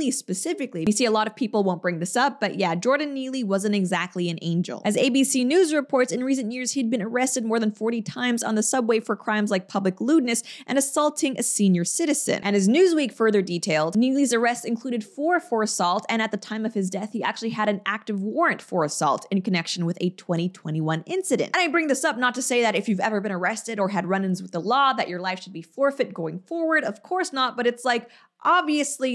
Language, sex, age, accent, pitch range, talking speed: English, female, 20-39, American, 200-275 Hz, 235 wpm